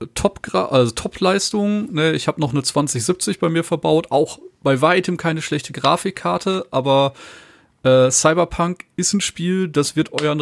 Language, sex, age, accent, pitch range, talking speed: German, male, 30-49, German, 140-175 Hz, 160 wpm